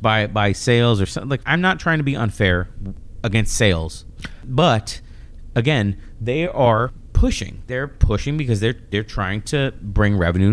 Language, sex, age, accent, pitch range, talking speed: English, male, 30-49, American, 95-135 Hz, 160 wpm